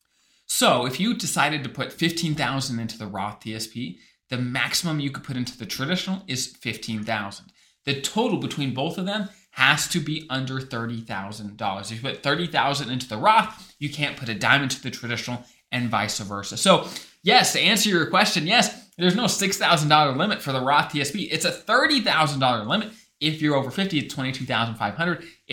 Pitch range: 125-180 Hz